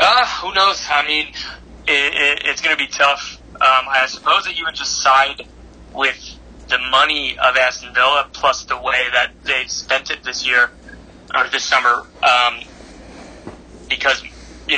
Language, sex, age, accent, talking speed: English, male, 20-39, American, 160 wpm